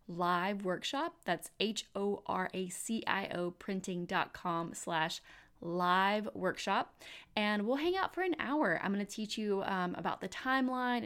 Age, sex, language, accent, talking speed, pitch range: 20-39, female, English, American, 155 wpm, 180-225 Hz